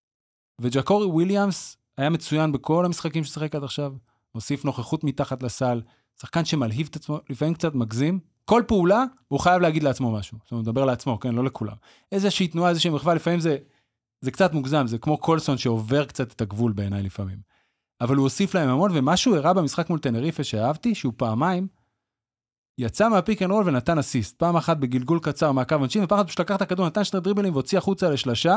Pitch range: 120-175 Hz